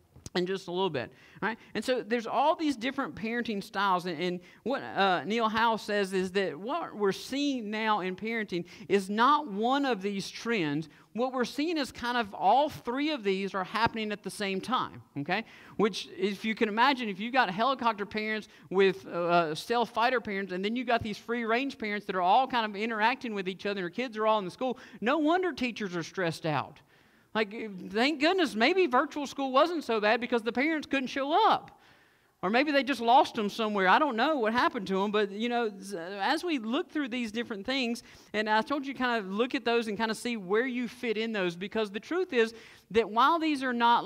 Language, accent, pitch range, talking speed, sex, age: English, American, 195-255 Hz, 225 wpm, male, 50-69